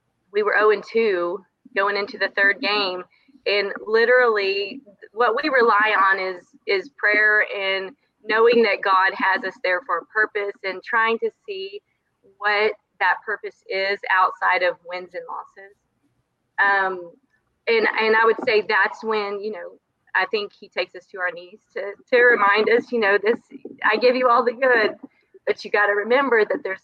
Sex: female